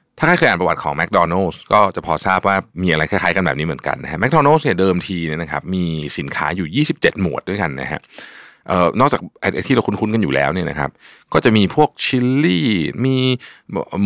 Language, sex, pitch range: Thai, male, 80-120 Hz